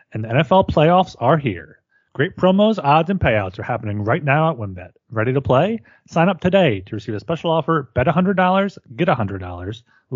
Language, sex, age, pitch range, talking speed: English, male, 30-49, 115-170 Hz, 190 wpm